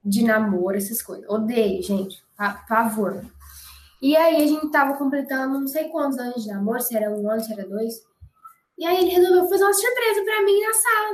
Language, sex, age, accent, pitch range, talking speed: Portuguese, female, 10-29, Brazilian, 215-300 Hz, 210 wpm